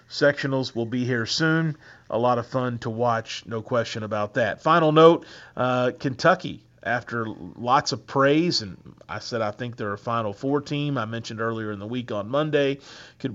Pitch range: 120-140 Hz